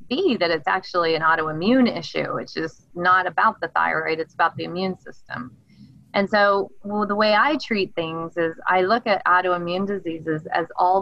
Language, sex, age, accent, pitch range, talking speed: English, female, 20-39, American, 165-205 Hz, 180 wpm